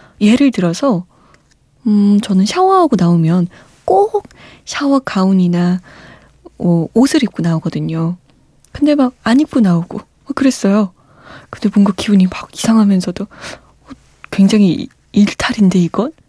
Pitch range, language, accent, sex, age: 175-255 Hz, Korean, native, female, 20-39